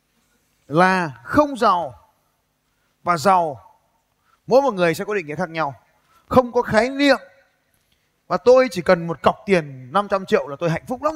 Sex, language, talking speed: male, Vietnamese, 170 wpm